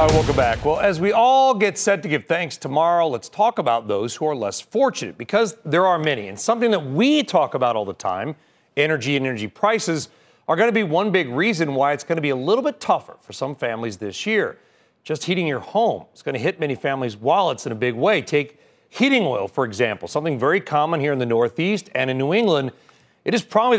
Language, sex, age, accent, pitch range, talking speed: English, male, 40-59, American, 140-200 Hz, 230 wpm